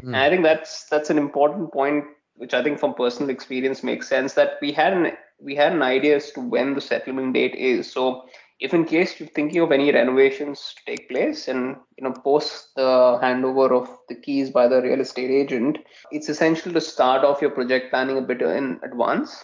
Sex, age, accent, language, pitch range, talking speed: male, 20-39, Indian, English, 125-145 Hz, 215 wpm